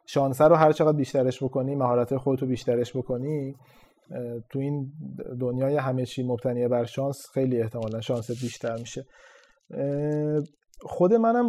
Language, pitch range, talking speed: Persian, 120-150 Hz, 130 wpm